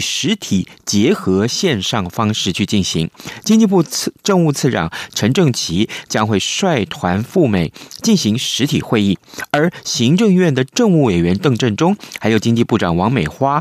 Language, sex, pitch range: Chinese, male, 100-160 Hz